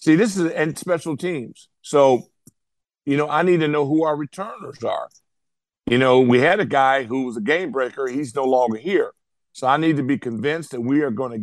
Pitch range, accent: 130-170 Hz, American